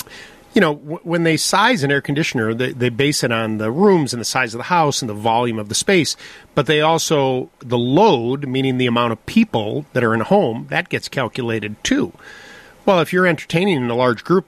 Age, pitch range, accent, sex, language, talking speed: 40-59, 115-145 Hz, American, male, English, 225 wpm